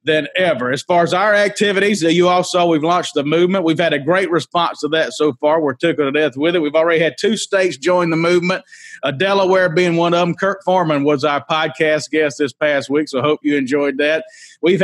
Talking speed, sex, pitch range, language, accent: 235 wpm, male, 150-180 Hz, English, American